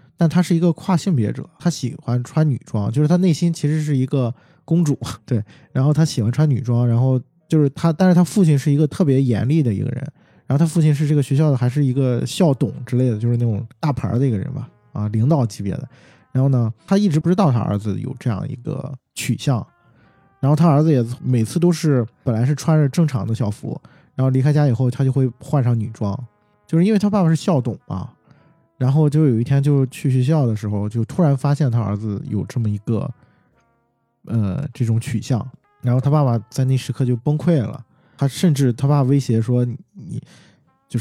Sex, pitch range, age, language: male, 115-150 Hz, 20-39, Chinese